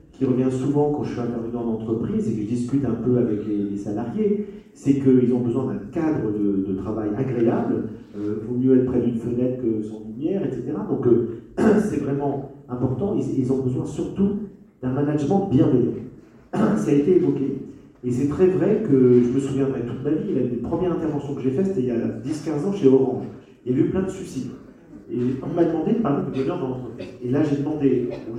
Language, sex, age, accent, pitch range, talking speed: French, male, 40-59, French, 120-155 Hz, 225 wpm